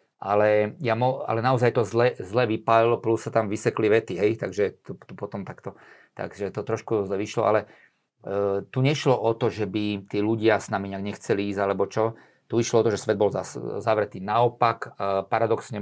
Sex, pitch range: male, 100-115 Hz